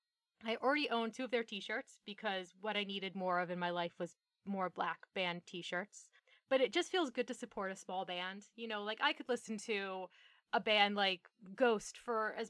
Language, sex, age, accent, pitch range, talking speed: English, female, 20-39, American, 190-245 Hz, 210 wpm